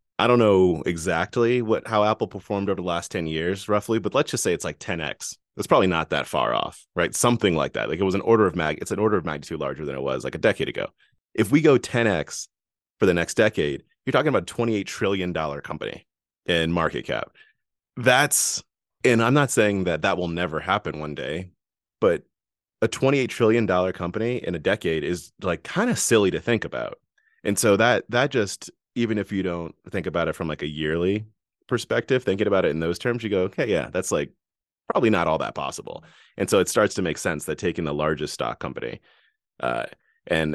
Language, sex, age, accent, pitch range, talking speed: English, male, 30-49, American, 80-105 Hz, 220 wpm